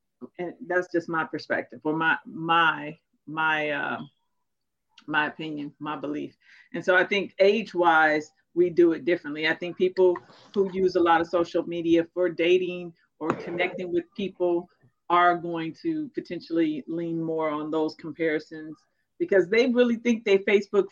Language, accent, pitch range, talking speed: English, American, 165-195 Hz, 160 wpm